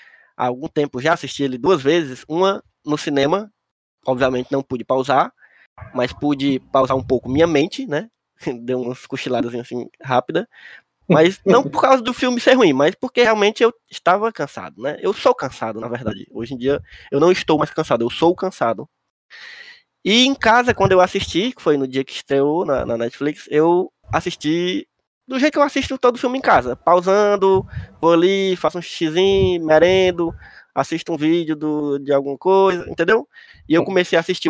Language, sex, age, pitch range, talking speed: Portuguese, male, 20-39, 130-195 Hz, 185 wpm